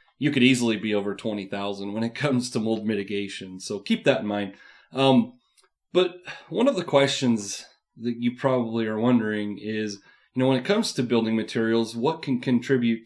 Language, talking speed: English, 185 wpm